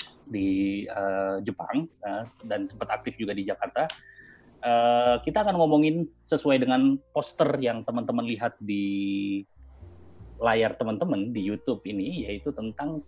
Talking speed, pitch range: 130 wpm, 100-140 Hz